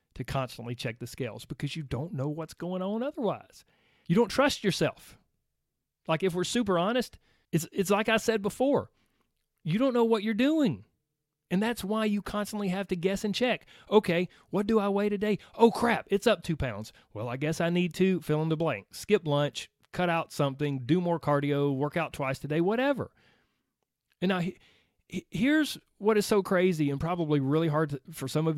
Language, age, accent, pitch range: English, 40-59, American, 145-205 Hz